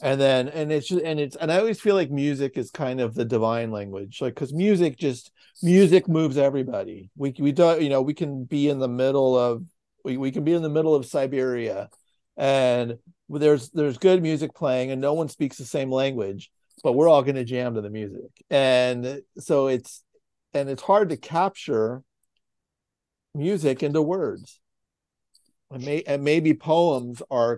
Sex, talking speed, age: male, 185 wpm, 50-69